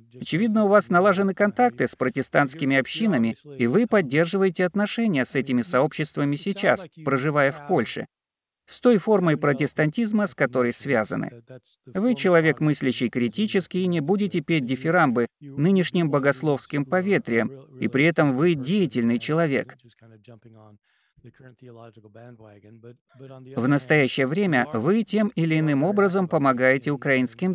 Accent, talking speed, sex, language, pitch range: native, 120 wpm, male, Russian, 130-180 Hz